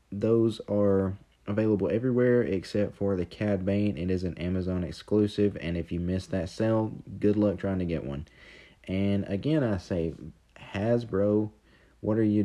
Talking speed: 165 wpm